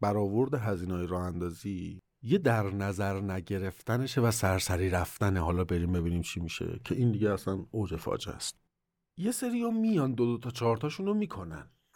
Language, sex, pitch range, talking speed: Persian, male, 90-125 Hz, 170 wpm